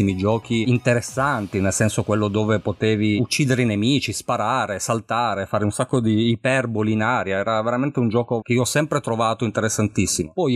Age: 30-49